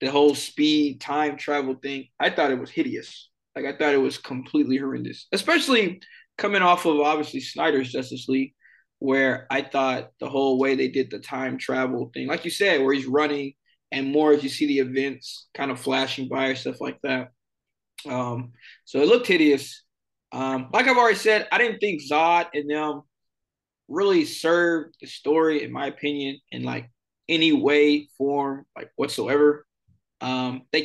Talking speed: 175 wpm